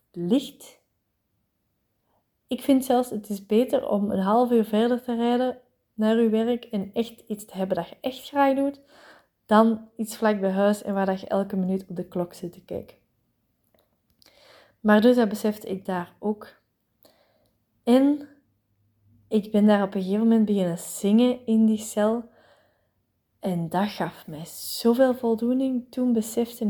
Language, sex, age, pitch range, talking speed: Dutch, female, 20-39, 190-235 Hz, 160 wpm